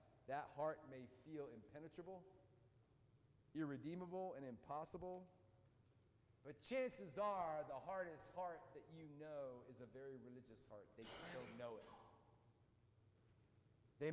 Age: 40-59